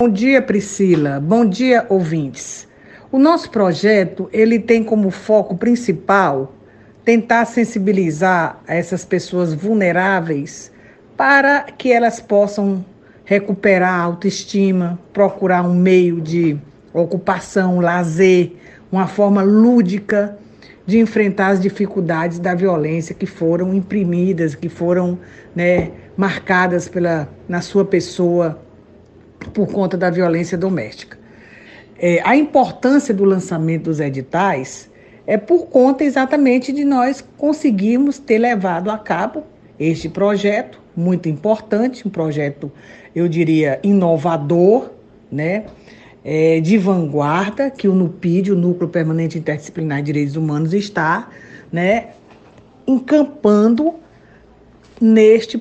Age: 50-69